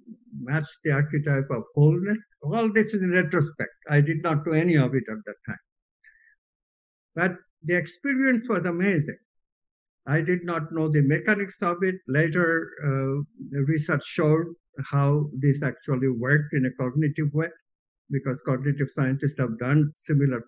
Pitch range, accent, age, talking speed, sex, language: 145-185 Hz, Indian, 60-79, 150 wpm, male, English